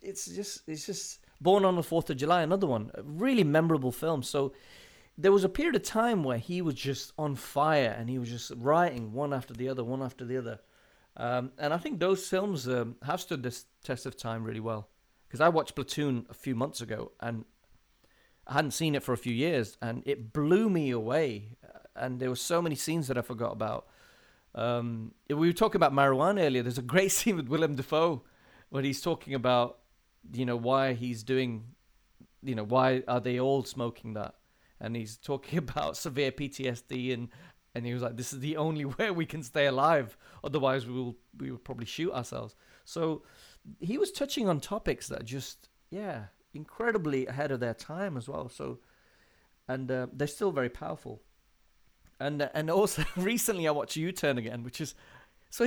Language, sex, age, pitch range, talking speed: English, male, 40-59, 125-170 Hz, 195 wpm